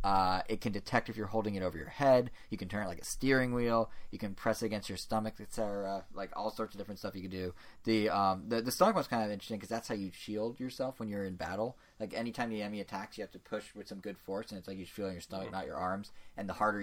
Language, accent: English, American